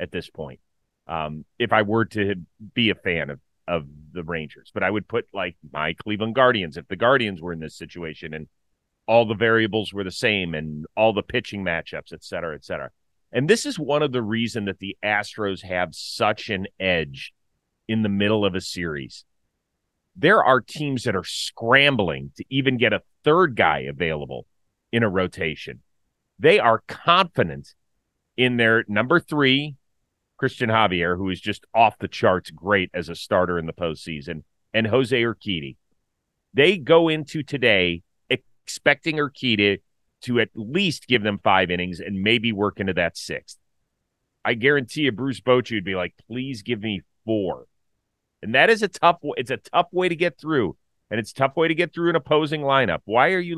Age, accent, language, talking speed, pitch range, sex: 30-49, American, English, 180 wpm, 90-135 Hz, male